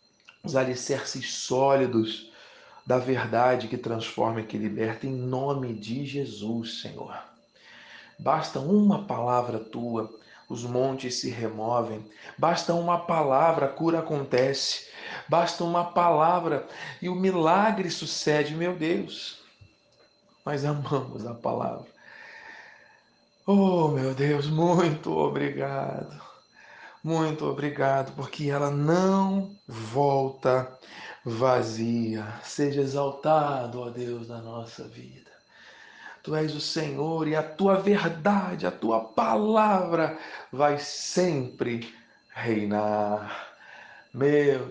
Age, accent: 40-59, Brazilian